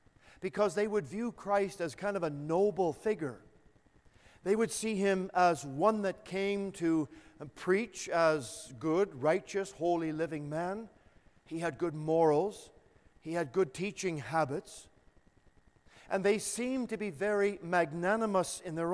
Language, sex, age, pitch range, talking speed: English, male, 50-69, 155-210 Hz, 145 wpm